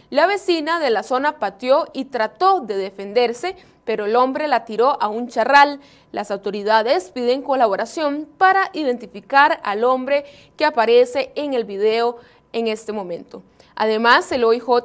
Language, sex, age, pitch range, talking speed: Spanish, female, 30-49, 230-305 Hz, 150 wpm